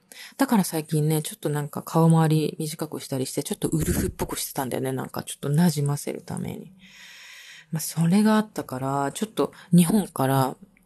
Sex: female